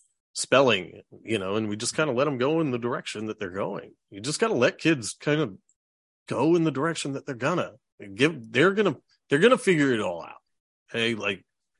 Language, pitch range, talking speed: English, 110-165 Hz, 220 wpm